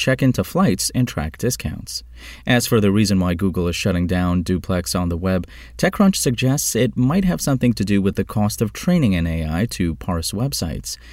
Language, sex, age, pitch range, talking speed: English, male, 30-49, 90-125 Hz, 200 wpm